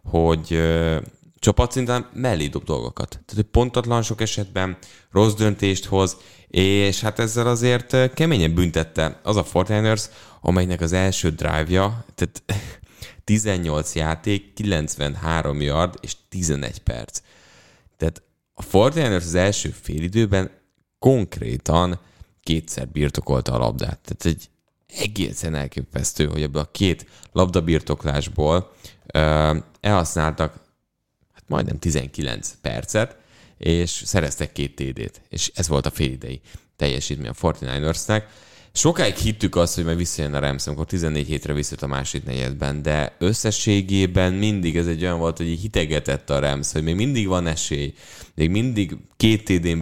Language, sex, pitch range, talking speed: English, male, 75-100 Hz, 130 wpm